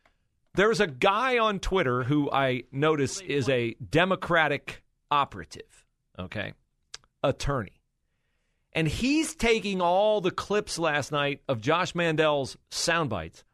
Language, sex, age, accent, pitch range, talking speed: English, male, 40-59, American, 120-180 Hz, 115 wpm